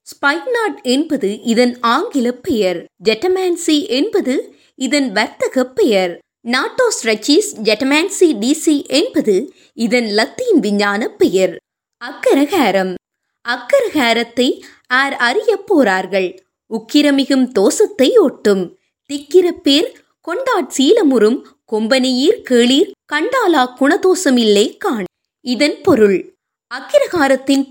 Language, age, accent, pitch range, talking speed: Tamil, 20-39, native, 235-360 Hz, 50 wpm